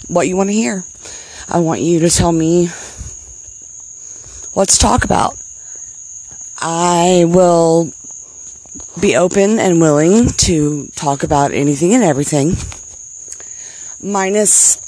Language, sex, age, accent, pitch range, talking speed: English, female, 30-49, American, 160-185 Hz, 115 wpm